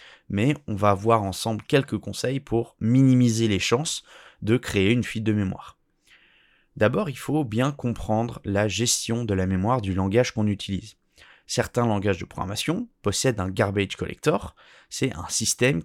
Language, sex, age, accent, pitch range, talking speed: French, male, 20-39, French, 100-130 Hz, 165 wpm